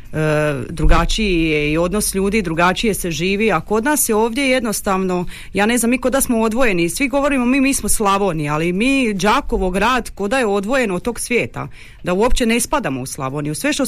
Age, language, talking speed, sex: 30-49, Croatian, 210 wpm, female